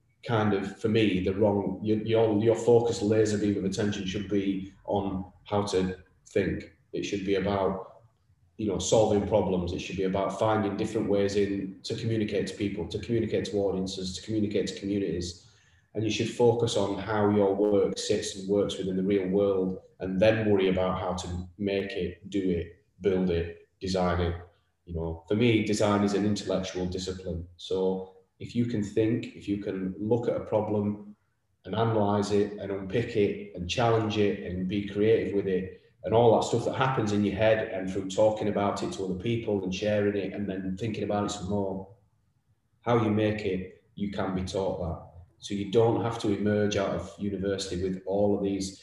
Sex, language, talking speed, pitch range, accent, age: male, English, 195 wpm, 95-105 Hz, British, 30-49